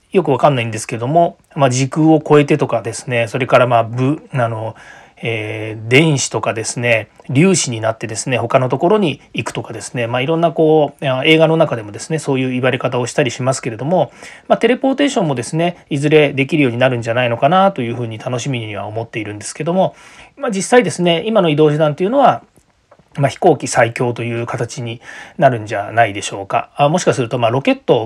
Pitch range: 115-160 Hz